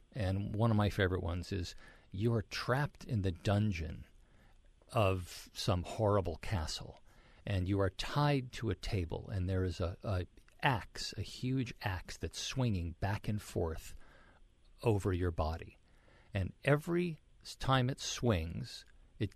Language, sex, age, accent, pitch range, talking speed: English, male, 50-69, American, 90-115 Hz, 145 wpm